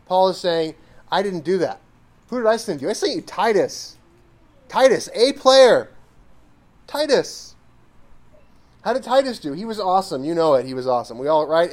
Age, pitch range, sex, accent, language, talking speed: 30-49, 125-195 Hz, male, American, English, 185 wpm